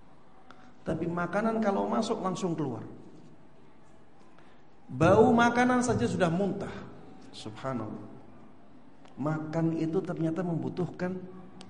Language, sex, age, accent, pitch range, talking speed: Indonesian, male, 50-69, native, 120-155 Hz, 80 wpm